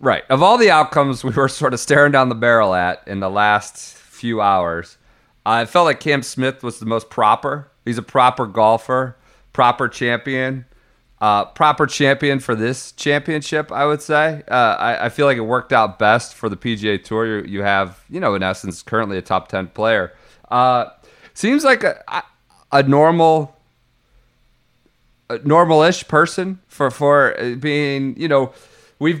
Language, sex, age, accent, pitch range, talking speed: English, male, 30-49, American, 110-150 Hz, 170 wpm